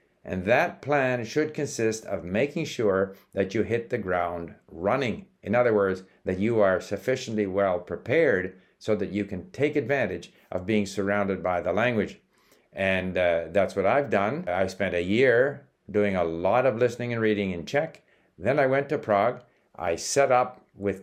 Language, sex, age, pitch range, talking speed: English, male, 60-79, 95-120 Hz, 180 wpm